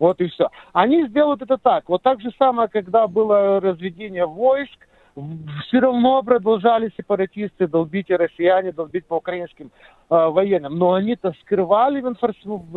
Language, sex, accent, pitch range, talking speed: Ukrainian, male, native, 185-260 Hz, 155 wpm